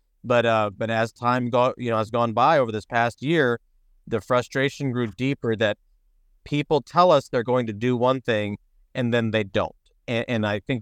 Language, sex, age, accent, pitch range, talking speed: English, male, 40-59, American, 110-130 Hz, 205 wpm